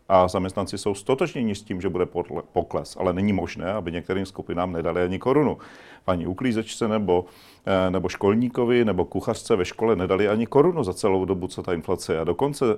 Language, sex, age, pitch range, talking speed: Czech, male, 40-59, 90-120 Hz, 185 wpm